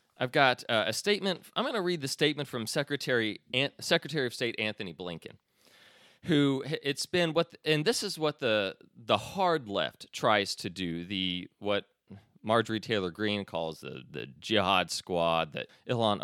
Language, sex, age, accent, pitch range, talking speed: English, male, 30-49, American, 100-170 Hz, 165 wpm